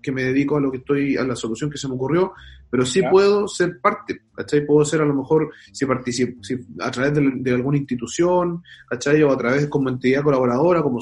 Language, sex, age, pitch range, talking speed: Spanish, male, 30-49, 125-160 Hz, 230 wpm